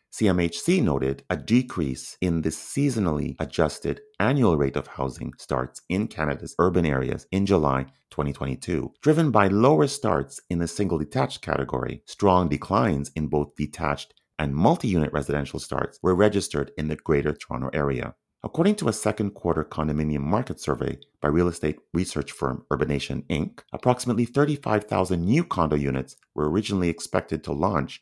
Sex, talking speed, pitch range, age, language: male, 150 wpm, 70-100 Hz, 30-49, English